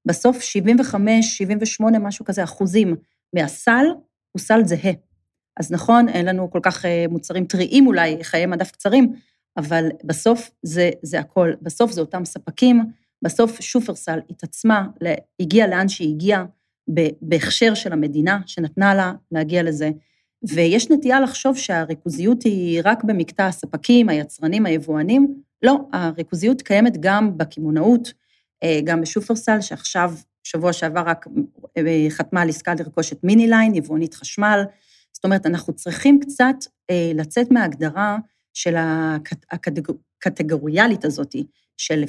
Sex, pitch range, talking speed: female, 165-225 Hz, 125 wpm